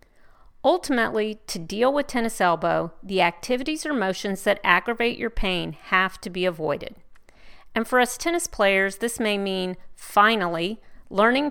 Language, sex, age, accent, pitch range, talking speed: English, female, 40-59, American, 185-240 Hz, 145 wpm